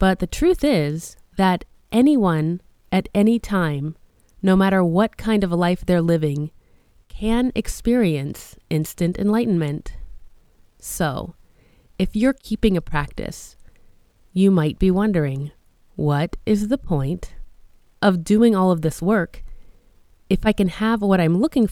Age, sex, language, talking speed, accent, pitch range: 20-39, female, English, 135 wpm, American, 155-215 Hz